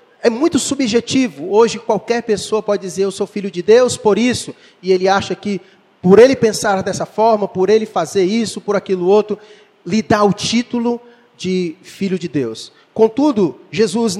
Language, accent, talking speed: Portuguese, Brazilian, 175 wpm